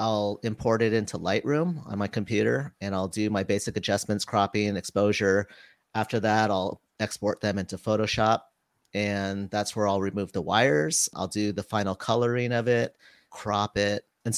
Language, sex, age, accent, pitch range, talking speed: English, male, 40-59, American, 100-115 Hz, 170 wpm